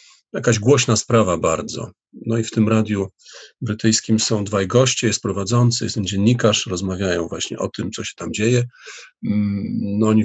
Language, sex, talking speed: Polish, male, 165 wpm